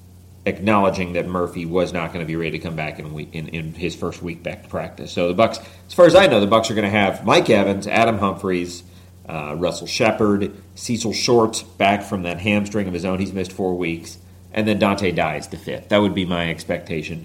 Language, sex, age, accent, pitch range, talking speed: English, male, 40-59, American, 90-105 Hz, 235 wpm